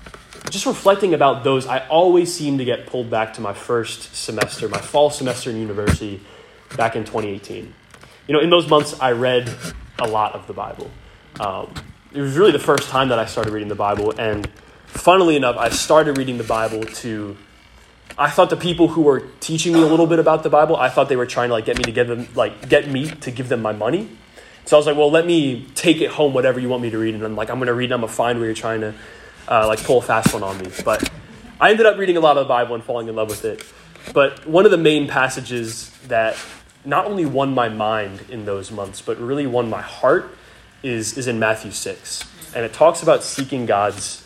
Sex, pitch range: male, 110-145 Hz